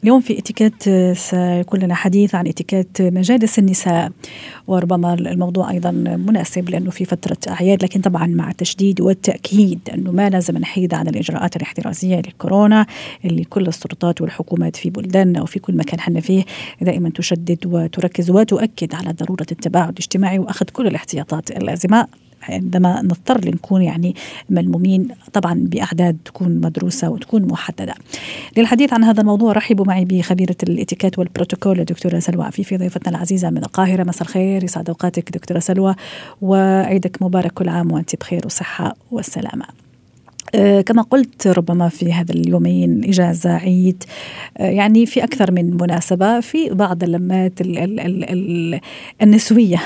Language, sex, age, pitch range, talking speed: Arabic, female, 40-59, 175-205 Hz, 140 wpm